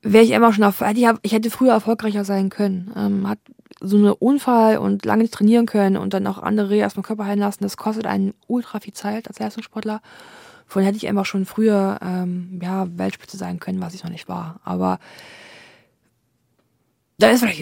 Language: German